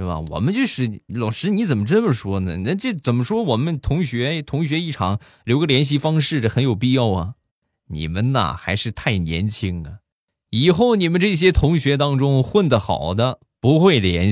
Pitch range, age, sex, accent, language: 90-140 Hz, 20-39, male, native, Chinese